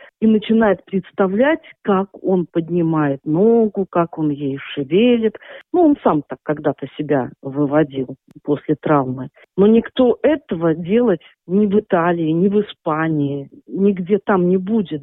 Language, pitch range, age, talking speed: Russian, 165-230 Hz, 40-59, 135 wpm